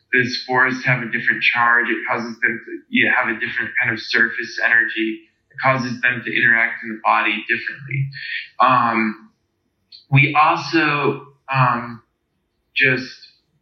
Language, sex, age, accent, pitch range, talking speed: English, male, 20-39, American, 115-135 Hz, 145 wpm